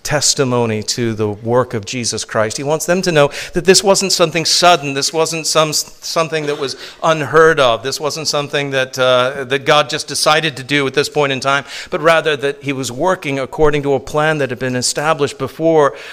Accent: American